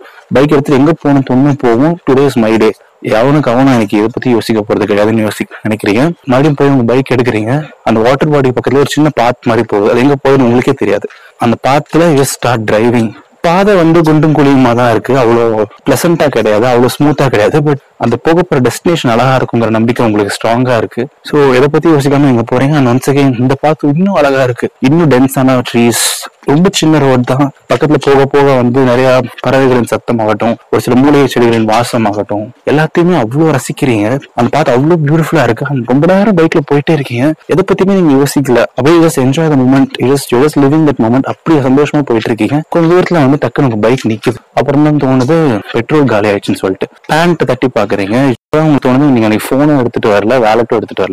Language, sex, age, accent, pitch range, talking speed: Tamil, male, 20-39, native, 120-150 Hz, 115 wpm